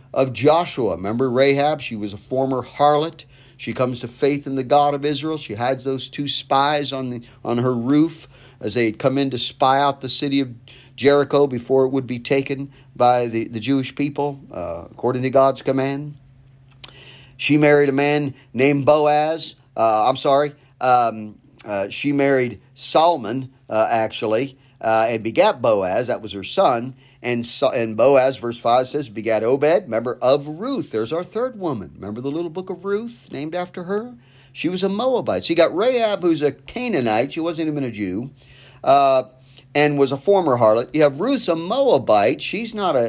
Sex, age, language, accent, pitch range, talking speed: male, 40-59, English, American, 130-150 Hz, 185 wpm